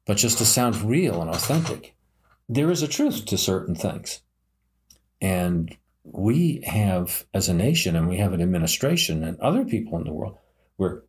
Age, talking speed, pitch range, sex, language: 50-69, 175 wpm, 85-105 Hz, male, English